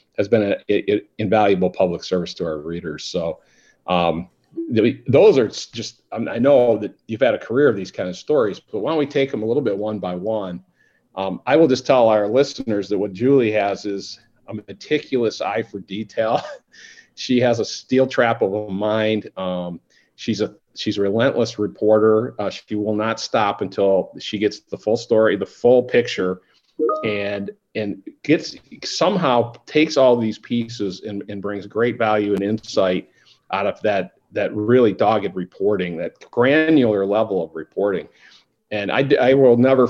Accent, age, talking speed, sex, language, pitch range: American, 50-69, 175 wpm, male, English, 100-130 Hz